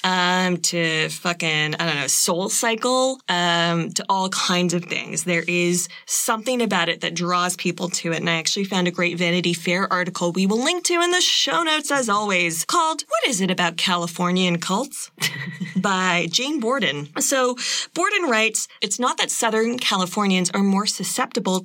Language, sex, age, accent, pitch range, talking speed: English, female, 20-39, American, 180-245 Hz, 175 wpm